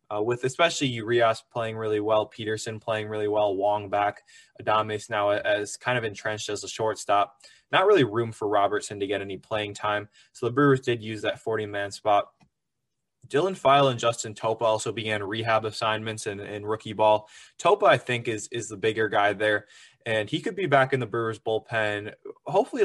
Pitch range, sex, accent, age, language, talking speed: 105-120 Hz, male, American, 20-39, English, 185 wpm